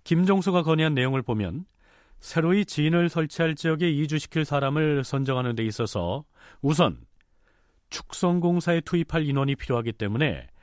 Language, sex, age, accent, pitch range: Korean, male, 40-59, native, 120-165 Hz